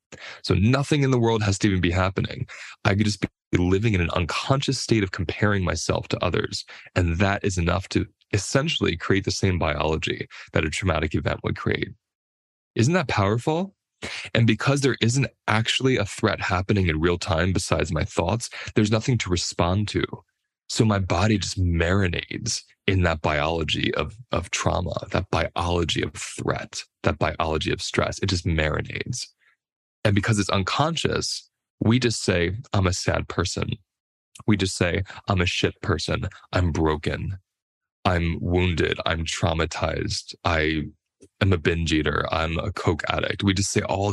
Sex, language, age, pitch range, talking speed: male, English, 20-39, 90-110 Hz, 165 wpm